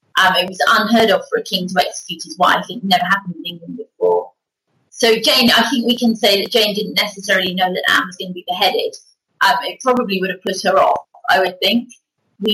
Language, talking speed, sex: English, 235 wpm, female